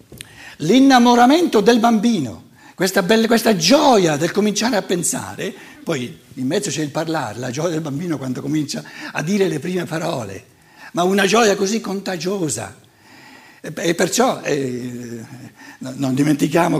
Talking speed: 130 wpm